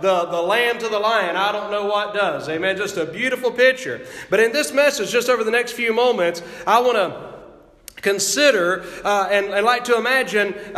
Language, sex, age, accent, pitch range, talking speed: English, male, 40-59, American, 205-250 Hz, 195 wpm